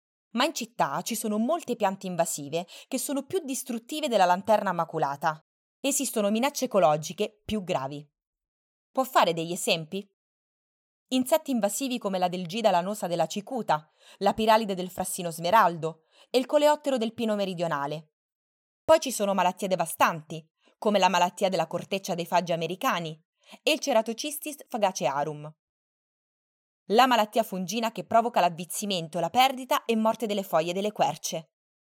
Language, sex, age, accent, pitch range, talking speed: Italian, female, 20-39, native, 165-230 Hz, 140 wpm